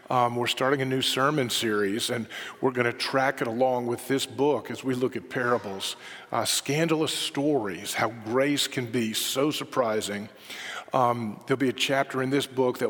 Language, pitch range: English, 120-130 Hz